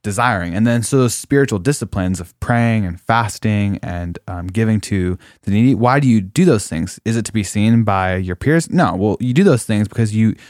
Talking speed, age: 225 wpm, 20-39